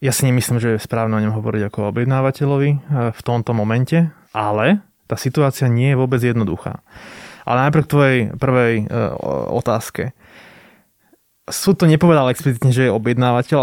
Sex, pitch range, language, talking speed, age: male, 115-140 Hz, Slovak, 150 wpm, 20-39